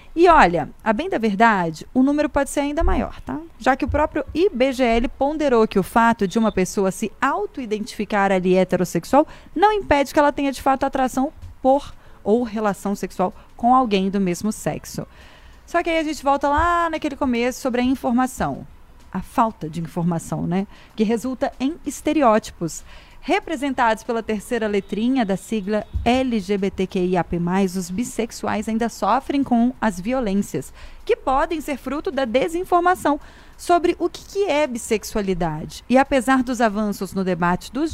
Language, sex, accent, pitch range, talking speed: Portuguese, female, Brazilian, 205-295 Hz, 155 wpm